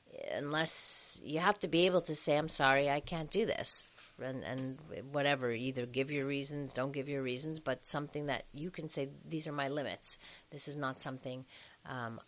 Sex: female